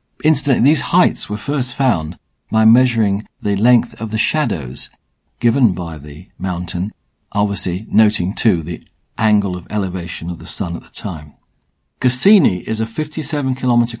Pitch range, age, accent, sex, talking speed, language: 95-125 Hz, 50-69, British, male, 150 wpm, English